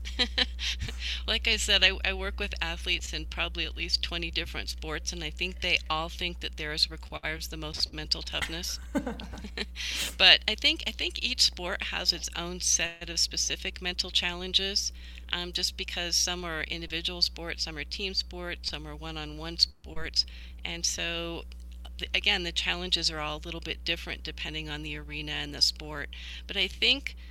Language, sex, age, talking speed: English, female, 50-69, 175 wpm